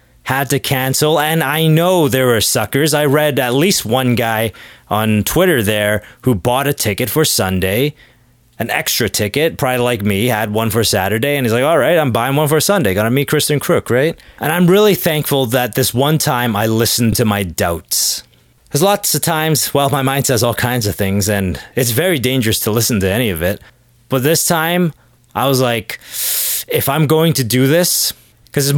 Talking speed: 205 wpm